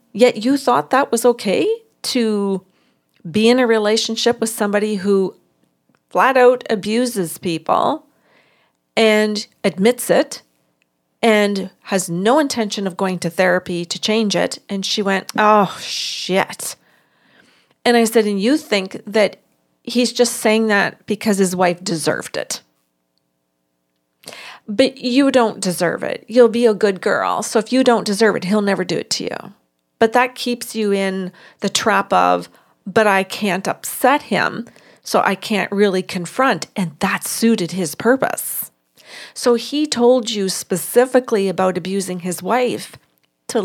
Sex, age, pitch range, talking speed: female, 40-59, 185-235 Hz, 150 wpm